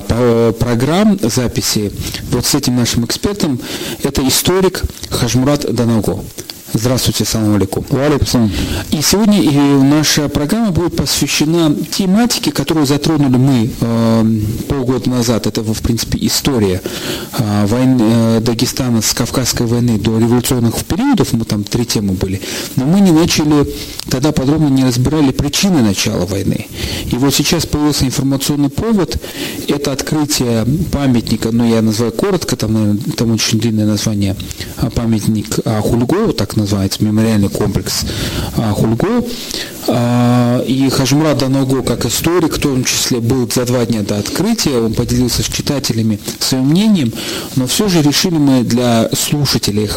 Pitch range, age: 110-140 Hz, 40-59